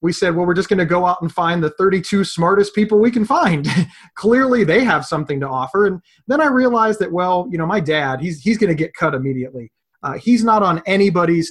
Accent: American